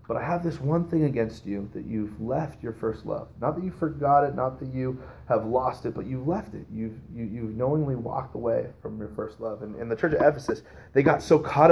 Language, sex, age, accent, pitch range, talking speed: English, male, 30-49, American, 105-130 Hz, 250 wpm